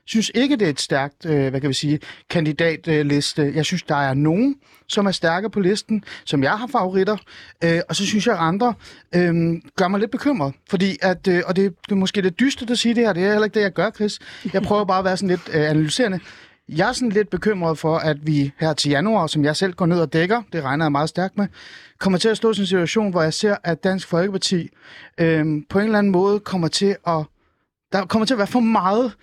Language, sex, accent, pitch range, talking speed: Danish, male, native, 160-210 Hz, 255 wpm